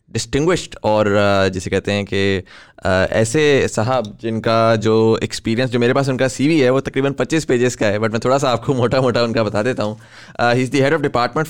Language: English